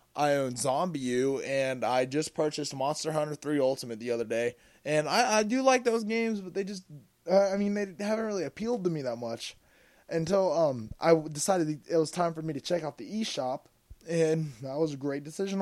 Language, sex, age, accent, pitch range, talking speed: English, male, 20-39, American, 125-170 Hz, 210 wpm